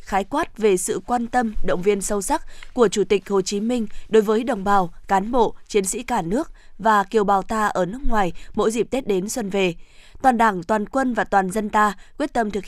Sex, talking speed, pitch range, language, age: female, 235 wpm, 195-230 Hz, Vietnamese, 20-39